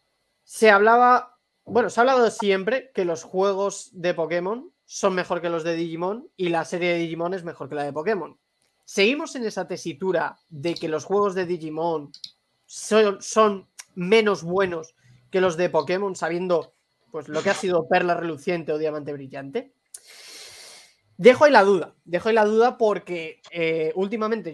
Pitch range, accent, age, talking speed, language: 165-215 Hz, Spanish, 20-39, 160 wpm, Spanish